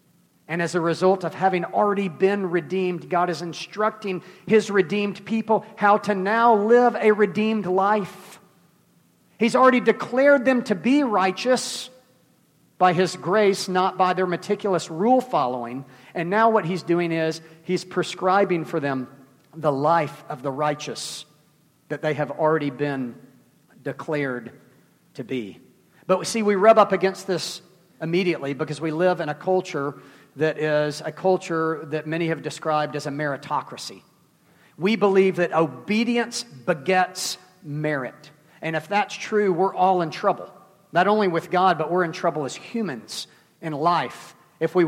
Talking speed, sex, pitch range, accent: 150 wpm, male, 155-200 Hz, American